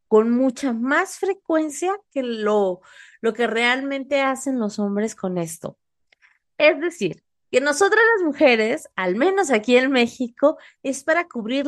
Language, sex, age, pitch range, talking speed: Spanish, female, 30-49, 205-285 Hz, 145 wpm